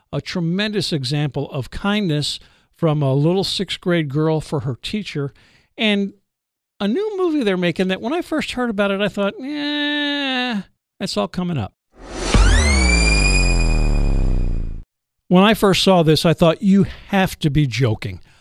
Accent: American